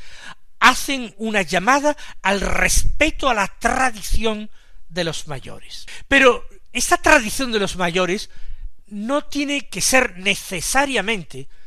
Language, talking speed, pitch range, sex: Spanish, 115 wpm, 150-230 Hz, male